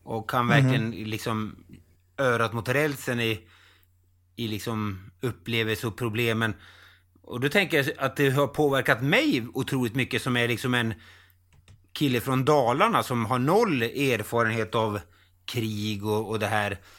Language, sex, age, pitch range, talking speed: Swedish, male, 30-49, 105-130 Hz, 145 wpm